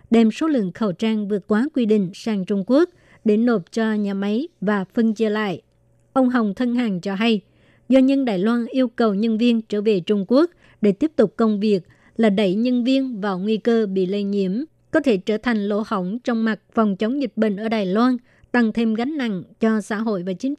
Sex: male